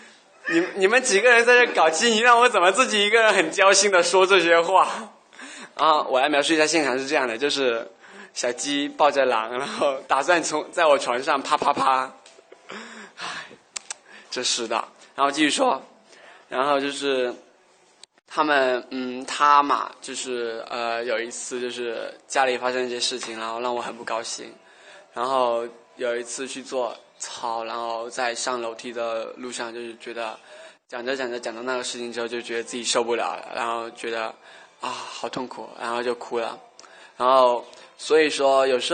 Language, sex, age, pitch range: Chinese, male, 20-39, 120-145 Hz